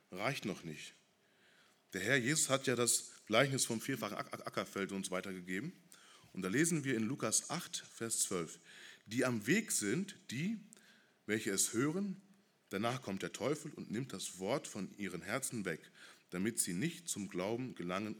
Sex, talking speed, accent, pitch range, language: male, 170 wpm, German, 100-150 Hz, German